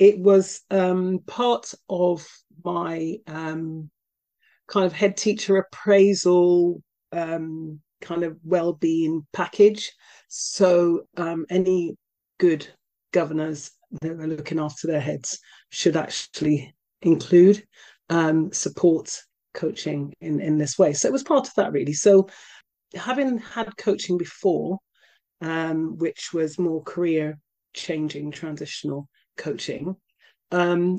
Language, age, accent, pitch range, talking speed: English, 40-59, British, 165-210 Hz, 115 wpm